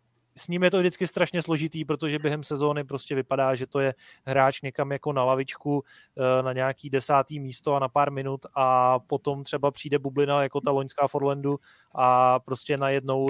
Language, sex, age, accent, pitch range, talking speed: Czech, male, 20-39, native, 135-150 Hz, 180 wpm